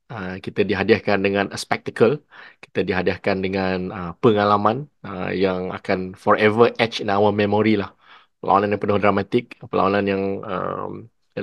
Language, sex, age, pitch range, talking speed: Malay, male, 20-39, 95-115 Hz, 140 wpm